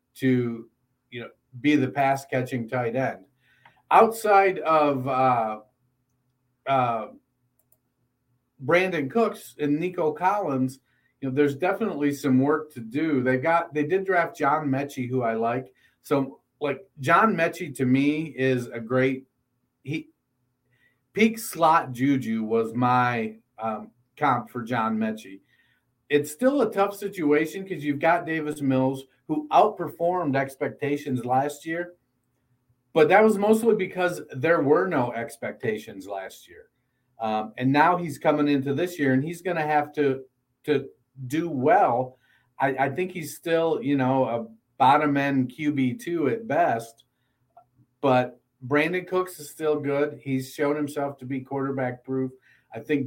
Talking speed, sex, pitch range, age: 145 wpm, male, 125-155 Hz, 40-59